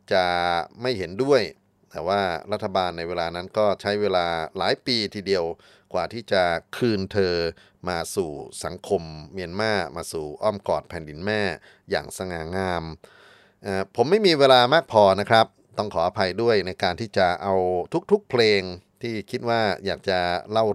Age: 30-49